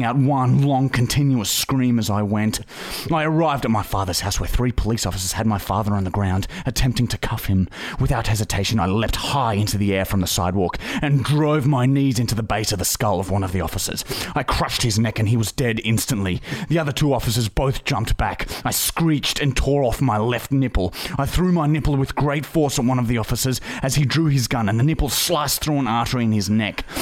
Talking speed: 235 wpm